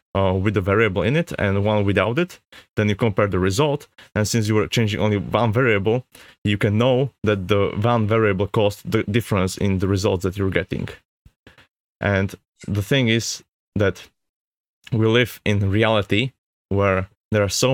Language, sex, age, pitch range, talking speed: English, male, 30-49, 100-115 Hz, 175 wpm